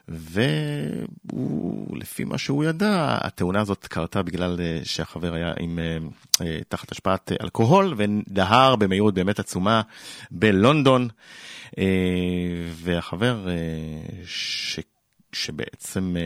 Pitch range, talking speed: 85-120 Hz, 80 wpm